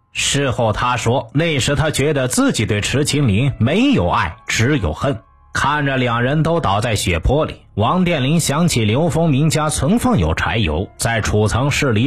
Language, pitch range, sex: Chinese, 105-145 Hz, male